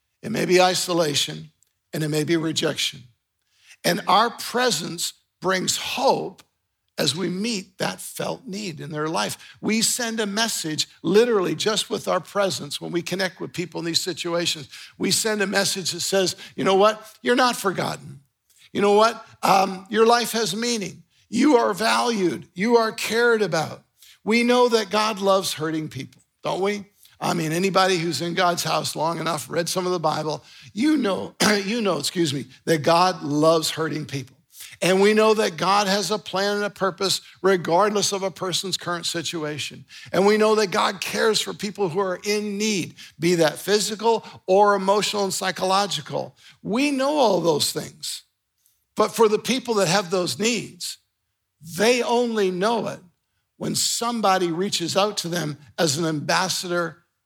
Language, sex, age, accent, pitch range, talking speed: English, male, 50-69, American, 165-215 Hz, 170 wpm